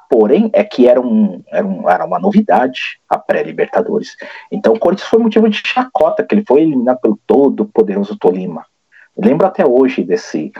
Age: 50-69